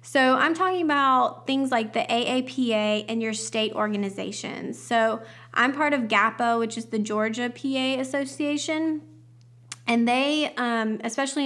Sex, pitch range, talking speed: female, 215-250 Hz, 140 wpm